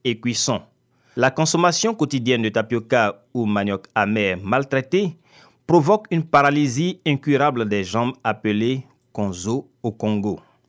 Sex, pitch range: male, 110-160 Hz